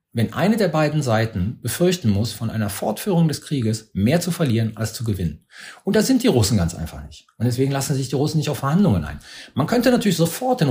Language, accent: German, German